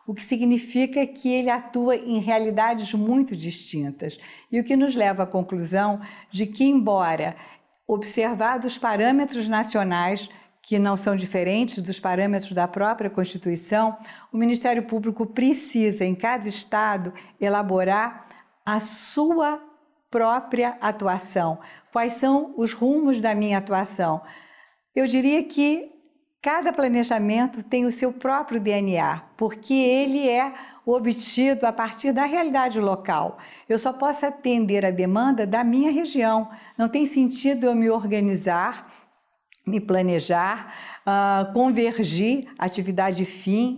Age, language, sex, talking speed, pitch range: 50-69, Portuguese, female, 125 wpm, 195-255 Hz